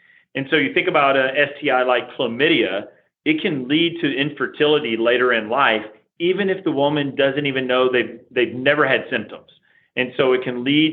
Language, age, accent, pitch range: English, 40-59, American, 115-145 Hz